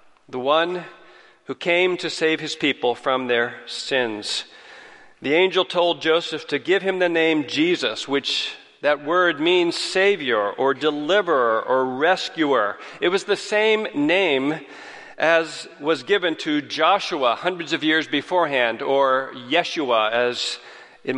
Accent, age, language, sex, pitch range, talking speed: American, 40-59, English, male, 130-175 Hz, 135 wpm